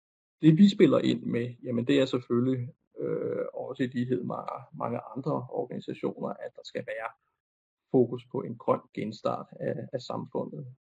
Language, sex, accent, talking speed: Danish, male, native, 165 wpm